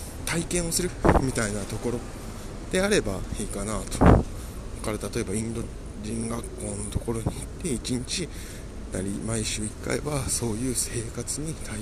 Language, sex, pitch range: Japanese, male, 95-115 Hz